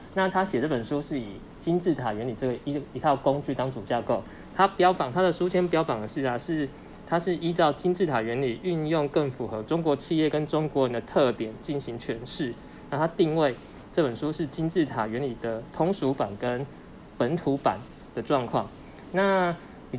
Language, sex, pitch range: Chinese, male, 120-160 Hz